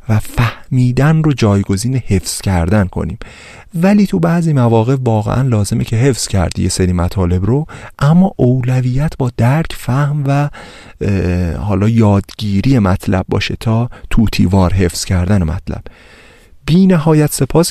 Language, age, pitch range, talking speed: Persian, 40-59, 90-125 Hz, 125 wpm